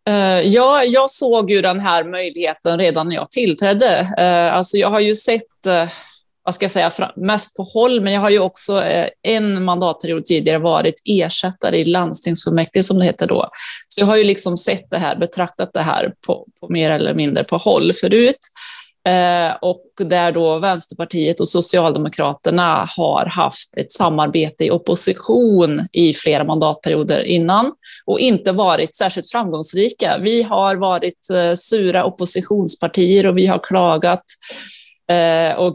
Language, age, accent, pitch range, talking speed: Swedish, 20-39, native, 165-205 Hz, 150 wpm